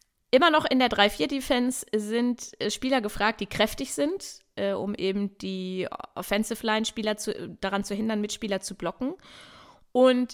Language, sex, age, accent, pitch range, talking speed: German, female, 20-39, German, 200-245 Hz, 140 wpm